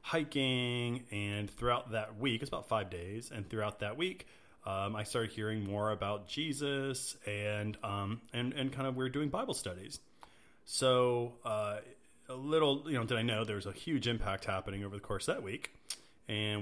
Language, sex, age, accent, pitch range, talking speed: English, male, 30-49, American, 105-120 Hz, 185 wpm